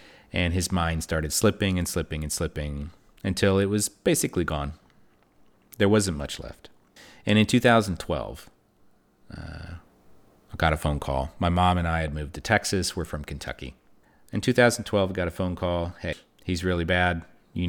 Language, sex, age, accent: English, male, 30-49, American